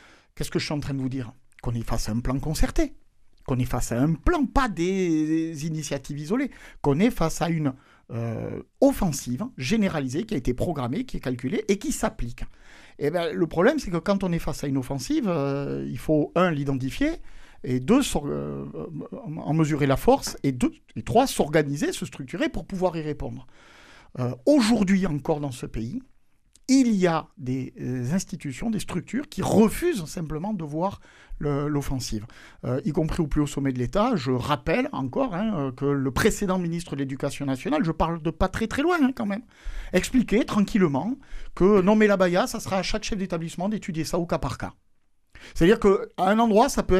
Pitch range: 140-200 Hz